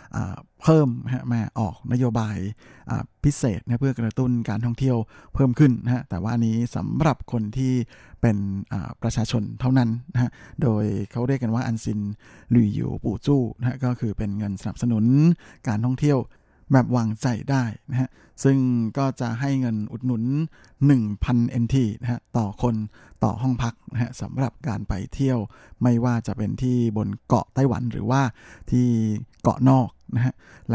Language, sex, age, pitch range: Thai, male, 60-79, 110-130 Hz